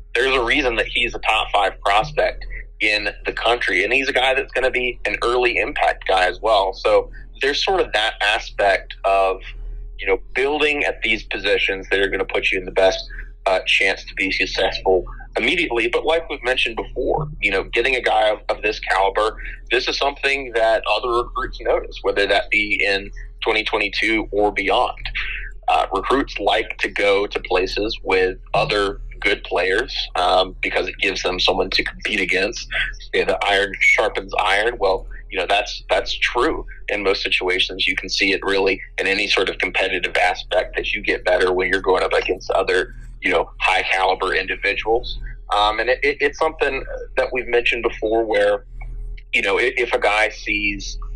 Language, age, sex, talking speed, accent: English, 30-49, male, 190 wpm, American